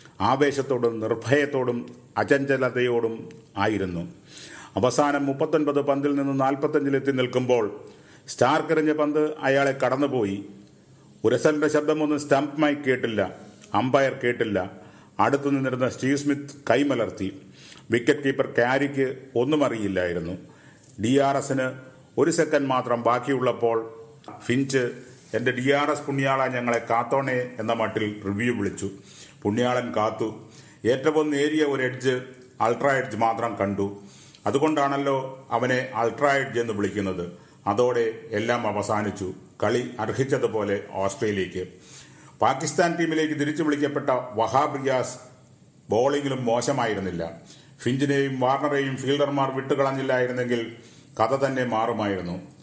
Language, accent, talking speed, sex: English, Indian, 85 wpm, male